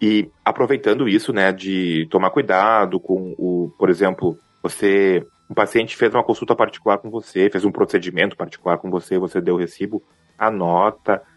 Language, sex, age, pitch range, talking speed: Portuguese, male, 20-39, 90-120 Hz, 170 wpm